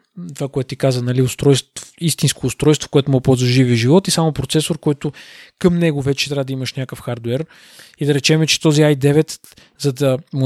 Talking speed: 195 wpm